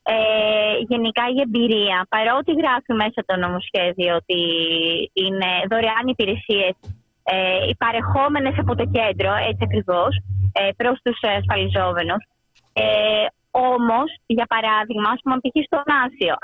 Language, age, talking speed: Greek, 20-39, 125 wpm